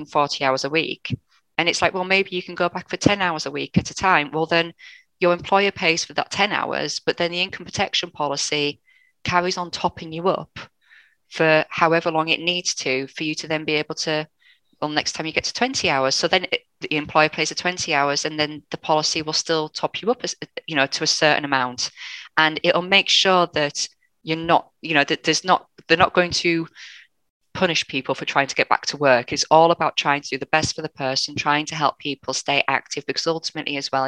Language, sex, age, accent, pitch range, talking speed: English, female, 10-29, British, 140-170 Hz, 235 wpm